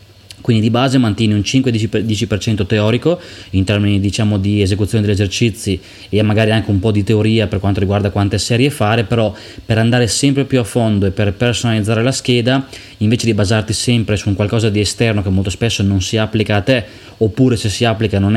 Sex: male